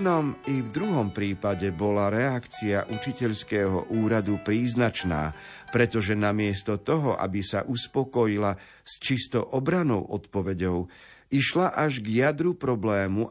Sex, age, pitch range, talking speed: male, 50-69, 100-130 Hz, 115 wpm